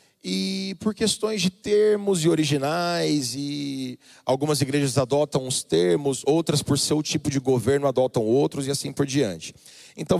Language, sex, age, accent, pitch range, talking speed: Portuguese, male, 40-59, Brazilian, 125-165 Hz, 155 wpm